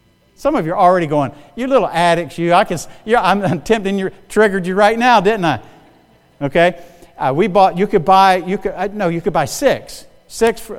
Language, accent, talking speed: English, American, 210 wpm